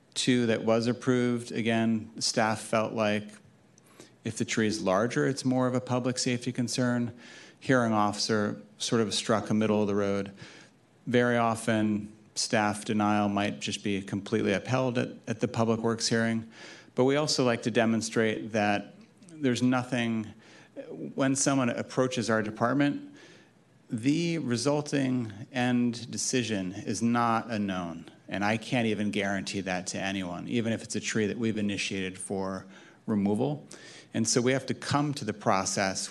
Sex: male